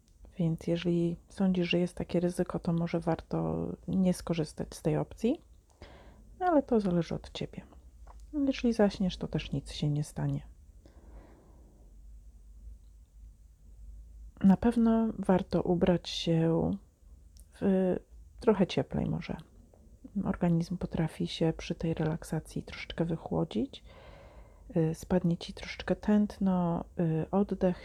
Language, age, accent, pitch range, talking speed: Polish, 40-59, native, 140-185 Hz, 105 wpm